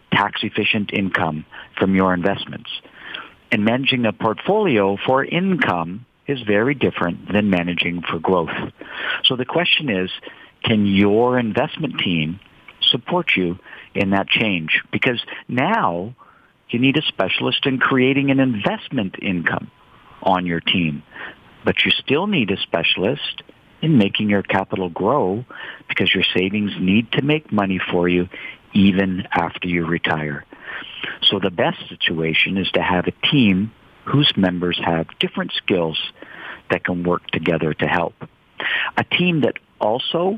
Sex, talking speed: male, 140 wpm